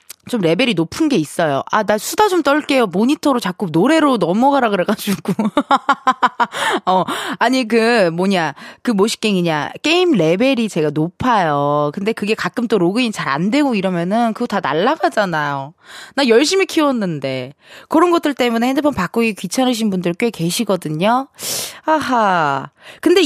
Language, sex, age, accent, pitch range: Korean, female, 20-39, native, 185-280 Hz